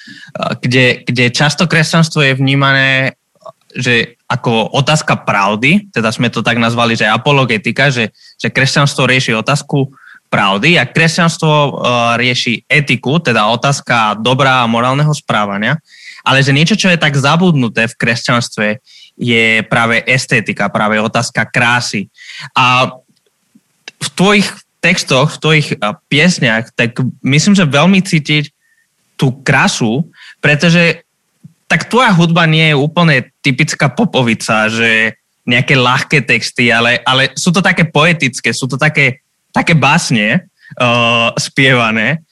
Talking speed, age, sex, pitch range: 125 wpm, 20-39, male, 120-160 Hz